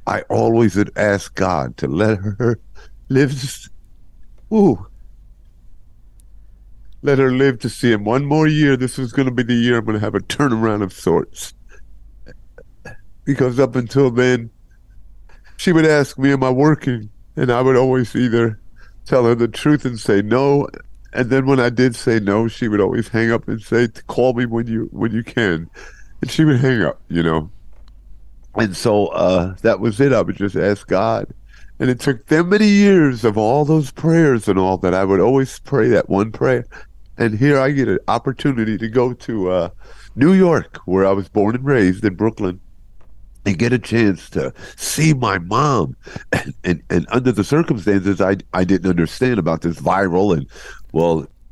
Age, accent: 50-69, American